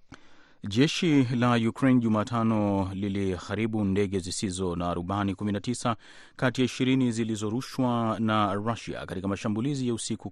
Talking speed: 115 wpm